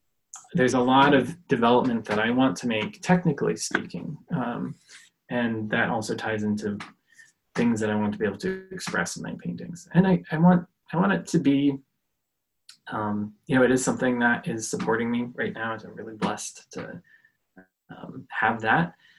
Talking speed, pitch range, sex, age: 180 wpm, 110-150 Hz, male, 20-39